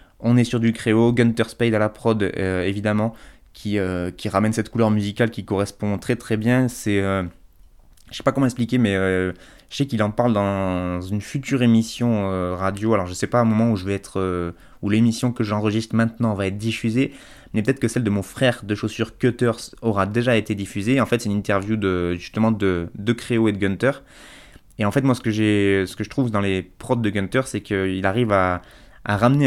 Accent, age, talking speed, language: French, 20-39, 235 wpm, French